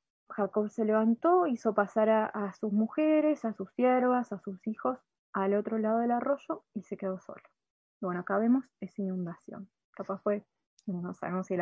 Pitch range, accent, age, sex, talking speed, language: 195-230 Hz, Argentinian, 20-39, female, 180 wpm, Spanish